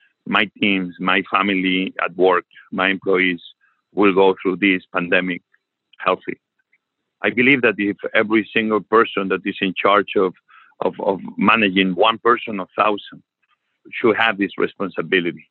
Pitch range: 100-120 Hz